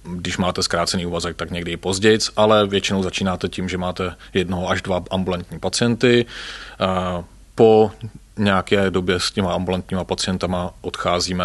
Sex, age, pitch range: male, 30-49, 85-95 Hz